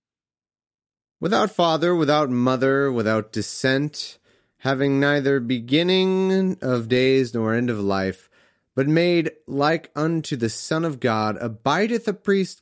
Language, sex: English, male